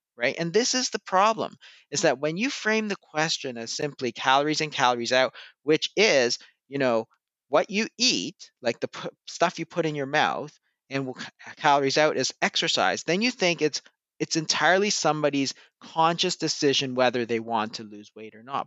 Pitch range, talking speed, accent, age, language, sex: 125-185 Hz, 190 wpm, American, 40-59, English, male